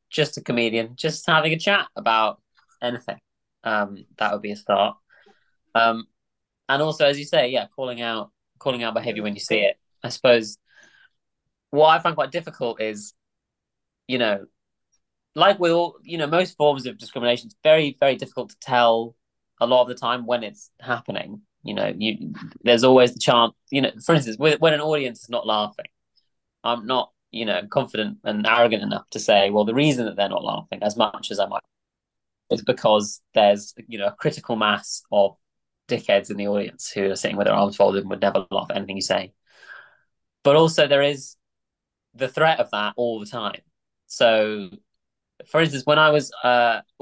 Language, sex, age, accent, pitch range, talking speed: English, male, 20-39, British, 105-145 Hz, 190 wpm